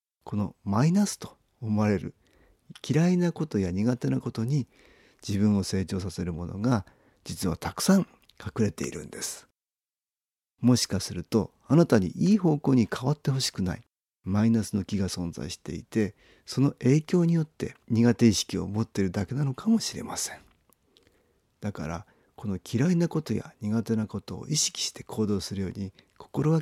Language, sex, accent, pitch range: Japanese, male, native, 100-150 Hz